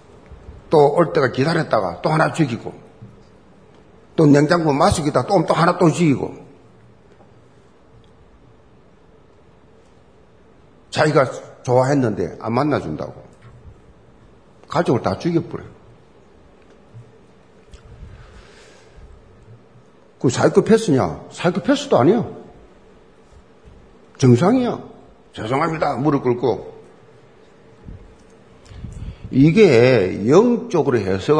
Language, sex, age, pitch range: Korean, male, 50-69, 120-165 Hz